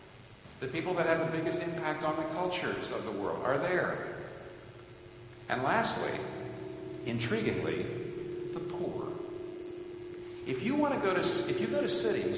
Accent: American